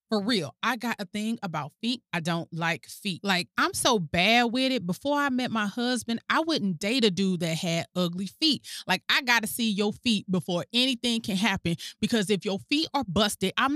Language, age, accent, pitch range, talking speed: English, 30-49, American, 180-275 Hz, 220 wpm